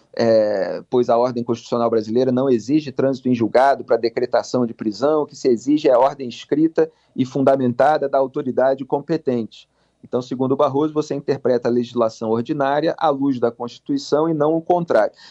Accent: Brazilian